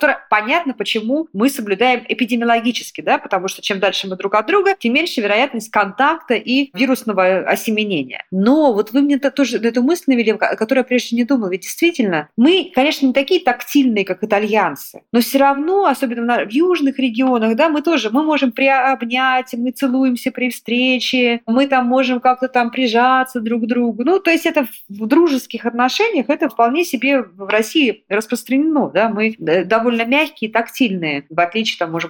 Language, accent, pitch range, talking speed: Russian, native, 195-265 Hz, 170 wpm